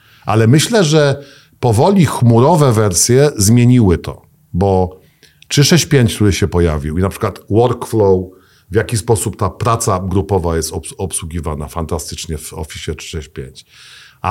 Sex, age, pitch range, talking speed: male, 50-69, 95-130 Hz, 120 wpm